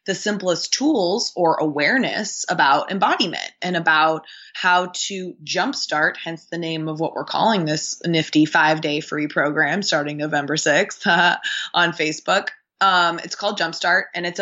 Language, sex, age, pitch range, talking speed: English, female, 20-39, 160-195 Hz, 155 wpm